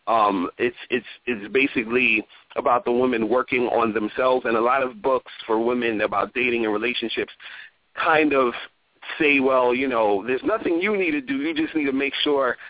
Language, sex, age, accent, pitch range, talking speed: English, male, 30-49, American, 120-140 Hz, 190 wpm